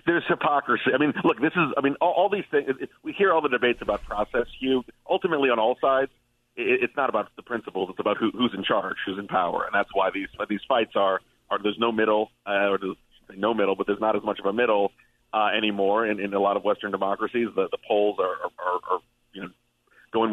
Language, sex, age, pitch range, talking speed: English, male, 40-59, 100-120 Hz, 250 wpm